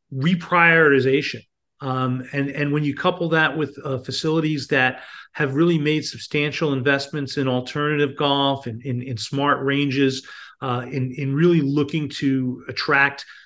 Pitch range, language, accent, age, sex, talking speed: 130-155 Hz, English, American, 40-59, male, 145 wpm